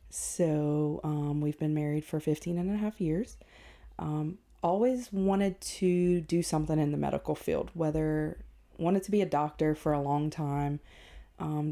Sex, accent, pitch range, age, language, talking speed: female, American, 155-180 Hz, 20-39, English, 165 wpm